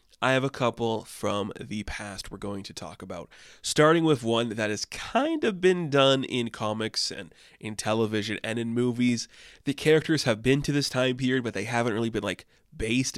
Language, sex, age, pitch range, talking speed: English, male, 20-39, 110-130 Hz, 200 wpm